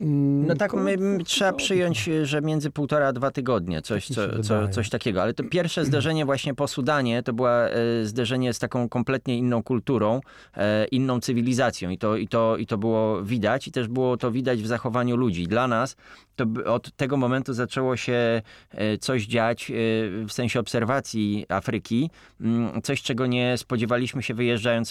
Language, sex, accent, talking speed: Polish, male, native, 155 wpm